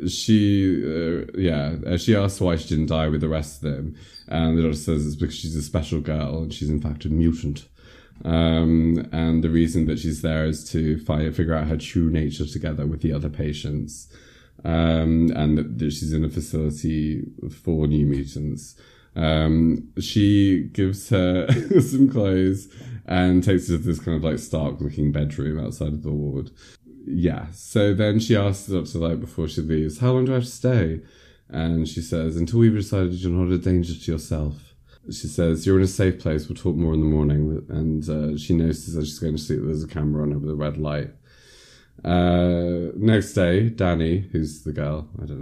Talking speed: 200 wpm